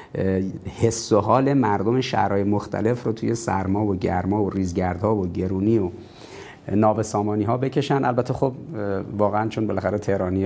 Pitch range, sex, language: 95-115 Hz, male, Persian